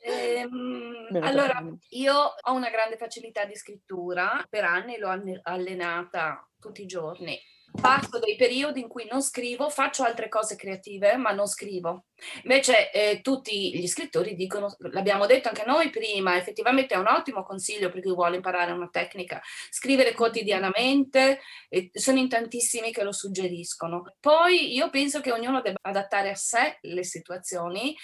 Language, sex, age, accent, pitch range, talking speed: Italian, female, 30-49, native, 190-260 Hz, 155 wpm